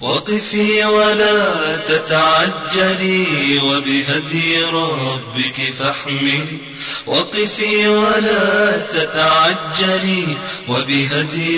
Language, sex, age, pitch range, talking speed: Arabic, male, 30-49, 160-235 Hz, 50 wpm